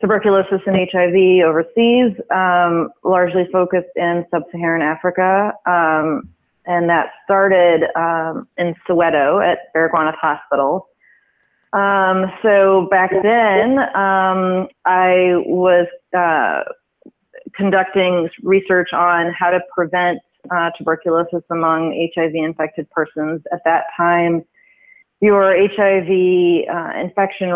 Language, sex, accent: English, female, American